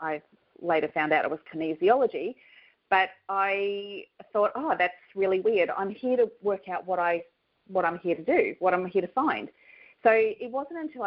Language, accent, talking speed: English, Australian, 190 wpm